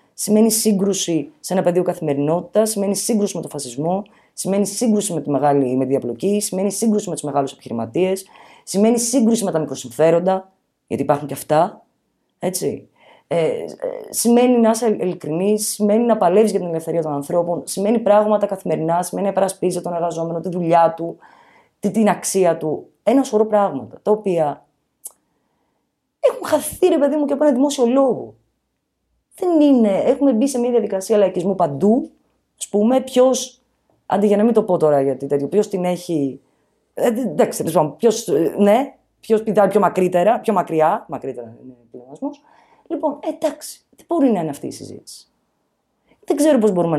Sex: female